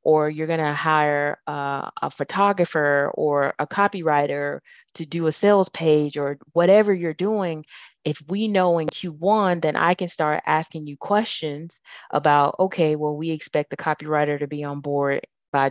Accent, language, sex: American, English, female